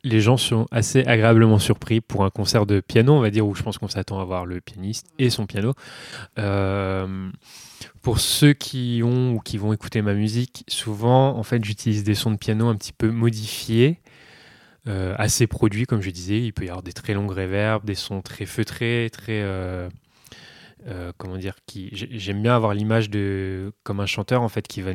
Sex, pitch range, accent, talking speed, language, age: male, 100-115 Hz, French, 205 wpm, French, 20-39